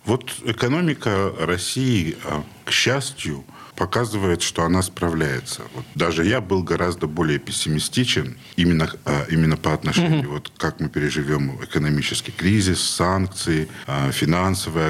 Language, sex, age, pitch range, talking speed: Russian, male, 50-69, 85-115 Hz, 105 wpm